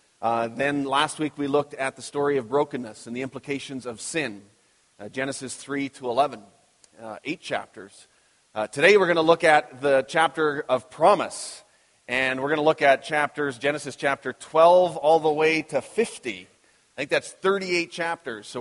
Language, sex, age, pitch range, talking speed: English, male, 30-49, 120-150 Hz, 180 wpm